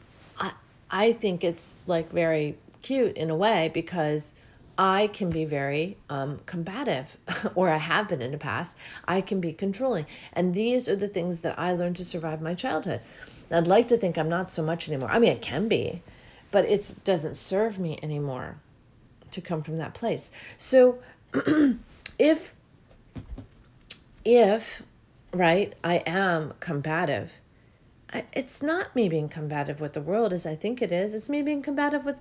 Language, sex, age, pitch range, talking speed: English, female, 40-59, 155-205 Hz, 170 wpm